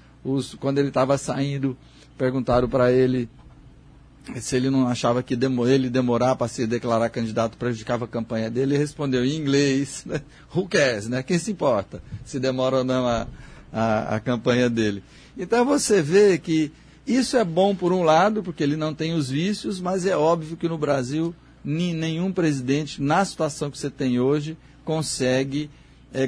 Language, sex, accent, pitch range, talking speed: Portuguese, male, Brazilian, 130-165 Hz, 165 wpm